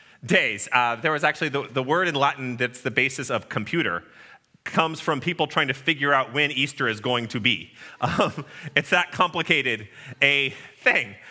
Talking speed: 180 wpm